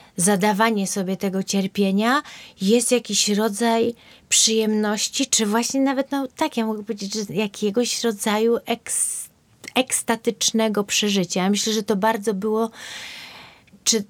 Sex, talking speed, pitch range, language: female, 120 wpm, 200-230 Hz, Polish